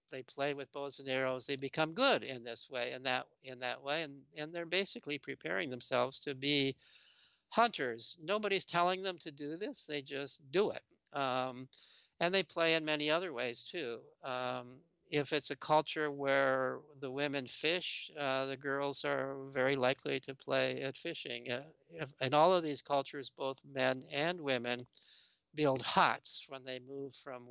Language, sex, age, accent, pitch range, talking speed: English, male, 60-79, American, 125-150 Hz, 170 wpm